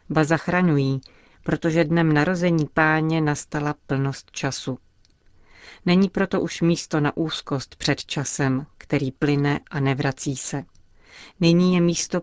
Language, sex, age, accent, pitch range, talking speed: Czech, female, 40-59, native, 145-165 Hz, 125 wpm